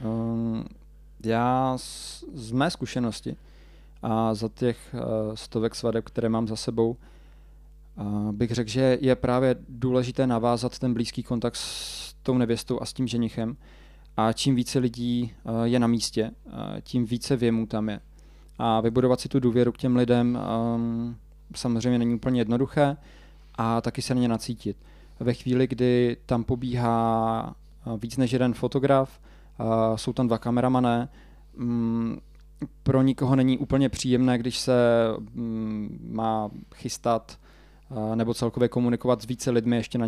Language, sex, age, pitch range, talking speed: Czech, male, 20-39, 115-125 Hz, 135 wpm